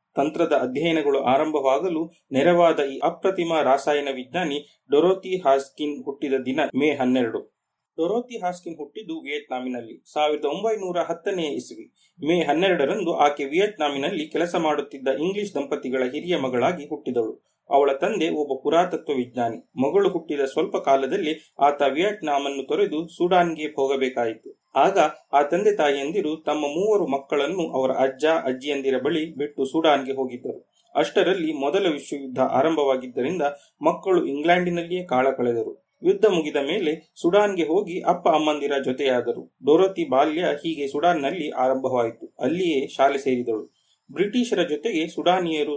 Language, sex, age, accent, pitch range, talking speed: Kannada, male, 30-49, native, 135-175 Hz, 115 wpm